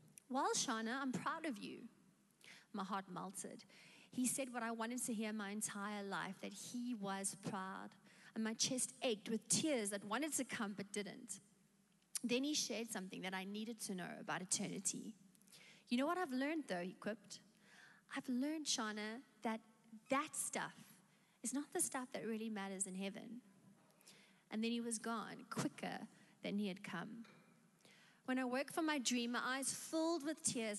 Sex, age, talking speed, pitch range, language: female, 30-49, 175 wpm, 200-255 Hz, English